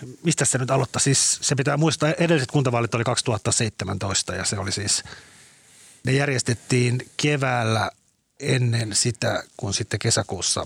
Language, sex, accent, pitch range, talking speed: Finnish, male, native, 100-125 Hz, 140 wpm